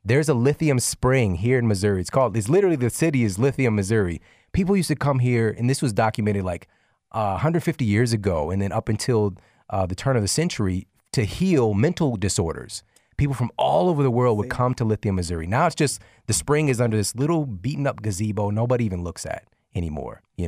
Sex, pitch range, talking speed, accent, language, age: male, 95-125 Hz, 215 wpm, American, English, 30-49